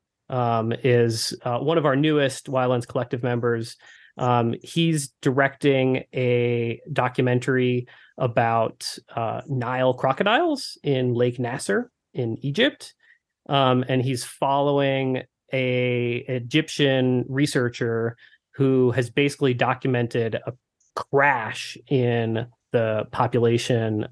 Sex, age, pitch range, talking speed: male, 30-49, 120-135 Hz, 100 wpm